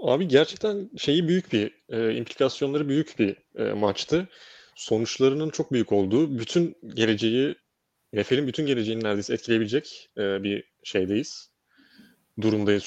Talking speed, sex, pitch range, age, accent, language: 120 wpm, male, 110-150 Hz, 30-49, native, Turkish